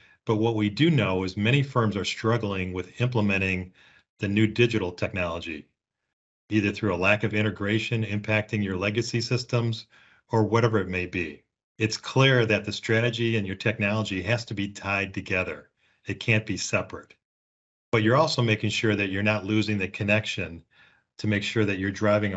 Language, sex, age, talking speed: English, male, 40-59, 175 wpm